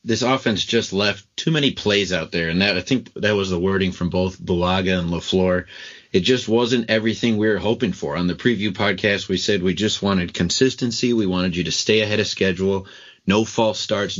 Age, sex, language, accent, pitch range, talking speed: 30-49, male, English, American, 95-115 Hz, 215 wpm